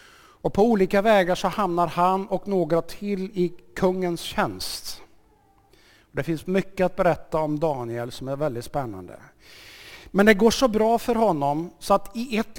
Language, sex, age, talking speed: Swedish, male, 50-69, 165 wpm